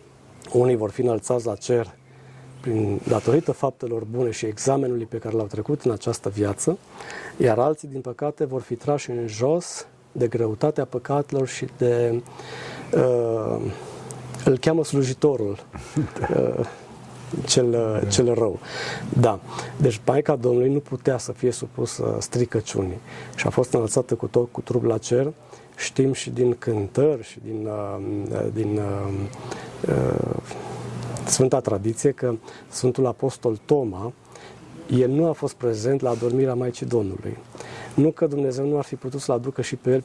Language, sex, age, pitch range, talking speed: Romanian, male, 40-59, 115-140 Hz, 145 wpm